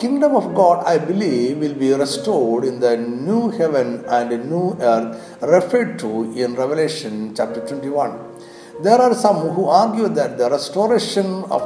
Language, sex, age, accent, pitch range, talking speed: Malayalam, male, 60-79, native, 135-200 Hz, 155 wpm